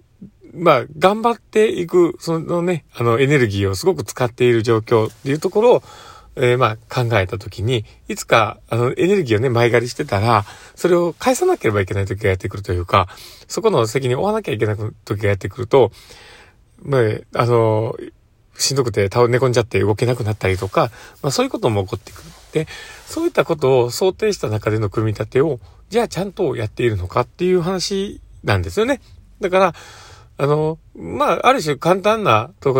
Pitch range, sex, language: 105-175 Hz, male, Japanese